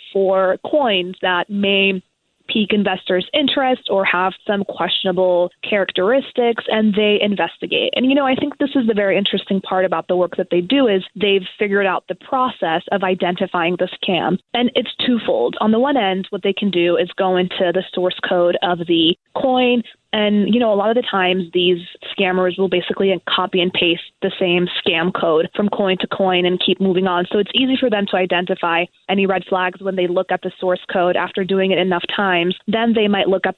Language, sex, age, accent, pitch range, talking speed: English, female, 20-39, American, 180-205 Hz, 205 wpm